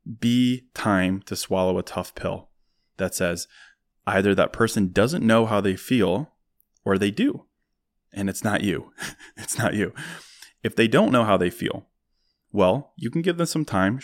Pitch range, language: 95-115 Hz, English